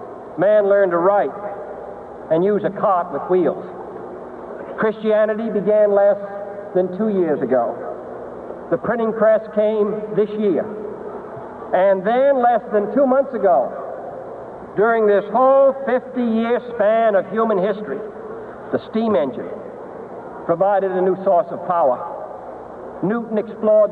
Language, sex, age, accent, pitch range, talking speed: English, male, 60-79, American, 200-240 Hz, 125 wpm